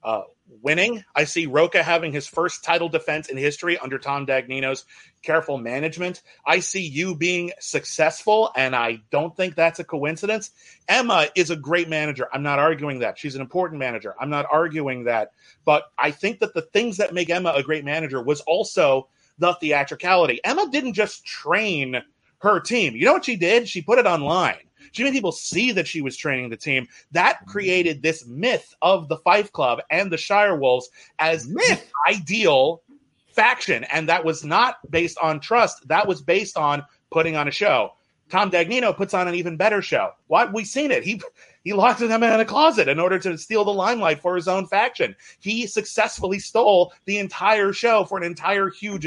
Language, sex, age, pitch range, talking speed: English, male, 30-49, 150-205 Hz, 190 wpm